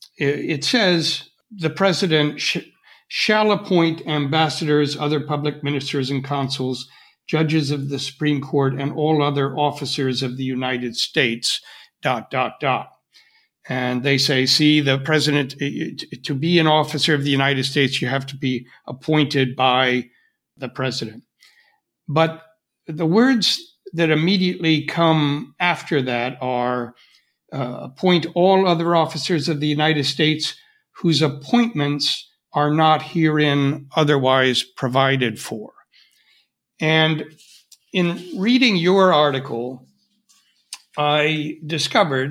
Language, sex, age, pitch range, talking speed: English, male, 60-79, 135-170 Hz, 120 wpm